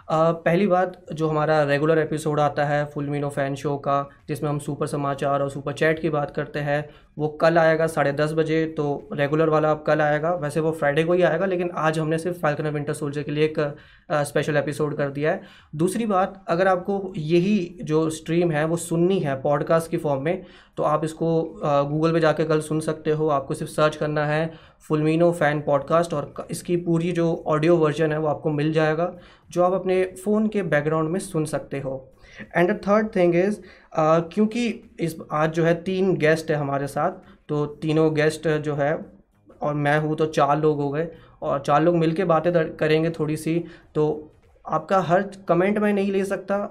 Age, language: 20-39, Hindi